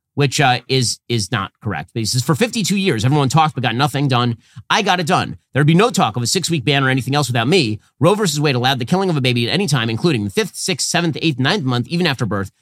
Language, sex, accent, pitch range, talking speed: English, male, American, 120-160 Hz, 275 wpm